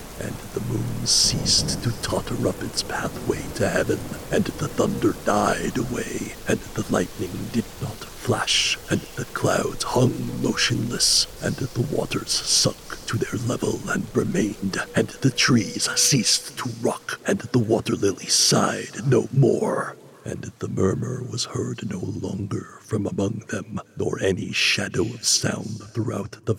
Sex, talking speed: male, 150 wpm